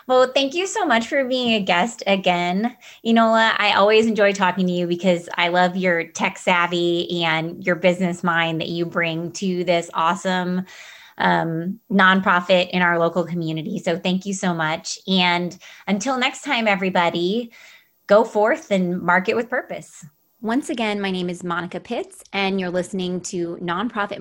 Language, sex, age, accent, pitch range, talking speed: English, female, 20-39, American, 180-235 Hz, 165 wpm